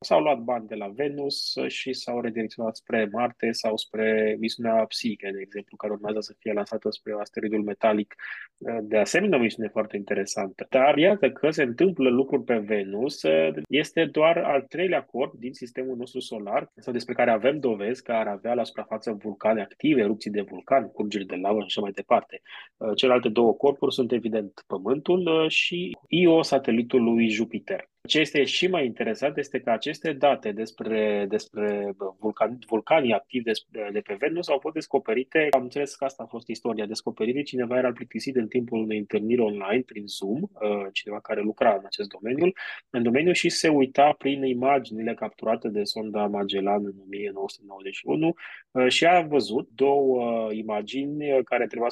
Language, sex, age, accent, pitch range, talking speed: Romanian, male, 20-39, native, 105-135 Hz, 165 wpm